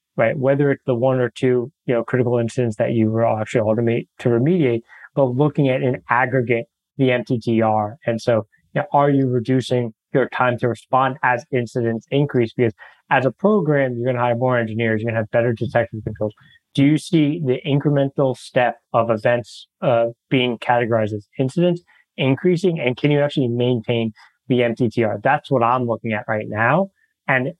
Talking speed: 185 wpm